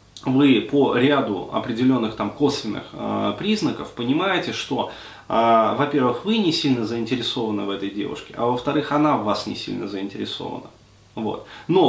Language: Russian